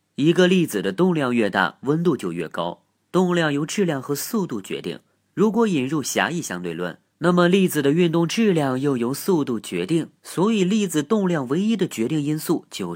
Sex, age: male, 30-49